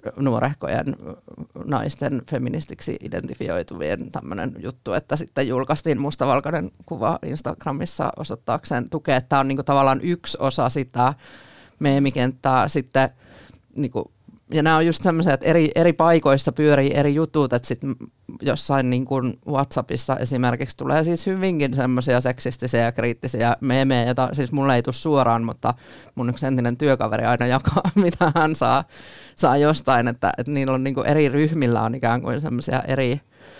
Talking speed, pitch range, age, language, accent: 145 wpm, 120-145 Hz, 20-39, Finnish, native